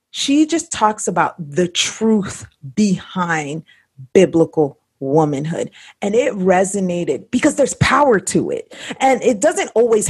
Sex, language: female, English